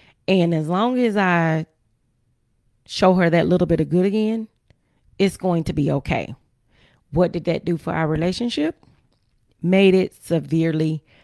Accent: American